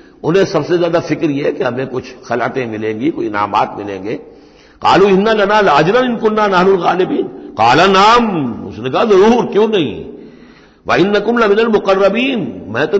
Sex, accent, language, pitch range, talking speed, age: male, native, Hindi, 140-195 Hz, 140 wpm, 60-79